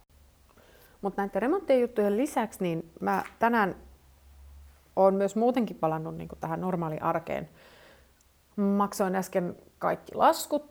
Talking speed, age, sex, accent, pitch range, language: 105 wpm, 30-49, female, native, 160-210 Hz, Finnish